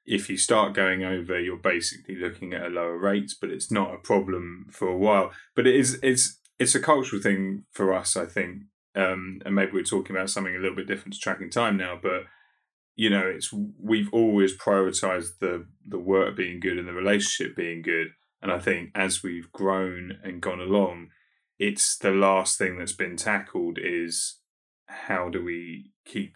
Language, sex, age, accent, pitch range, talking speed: English, male, 10-29, British, 90-100 Hz, 195 wpm